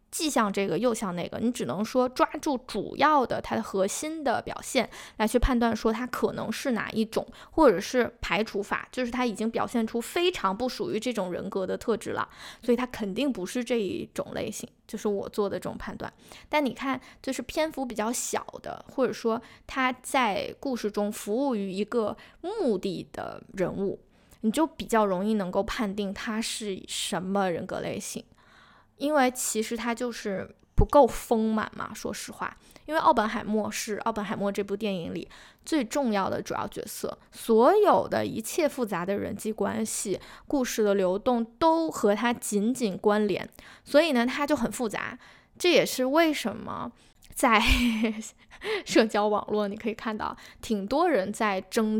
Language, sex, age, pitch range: Chinese, female, 20-39, 210-255 Hz